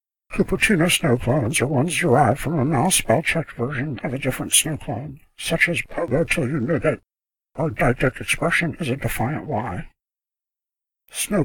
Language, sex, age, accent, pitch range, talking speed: English, male, 60-79, American, 120-160 Hz, 155 wpm